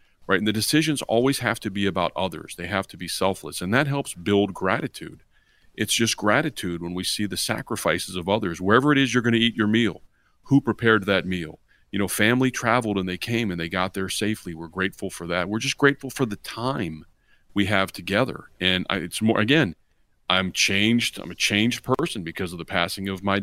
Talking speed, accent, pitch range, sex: 215 wpm, American, 95-115 Hz, male